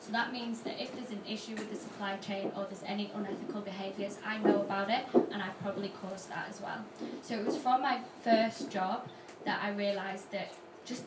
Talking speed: 215 wpm